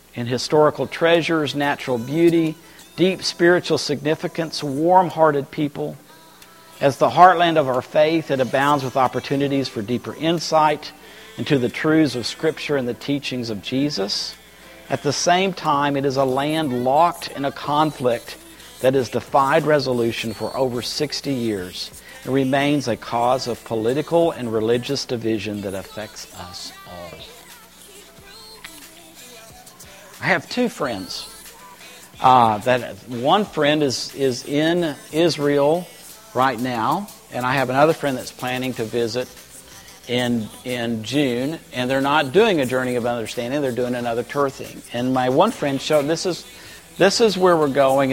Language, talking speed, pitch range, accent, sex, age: English, 145 wpm, 125-155 Hz, American, male, 50-69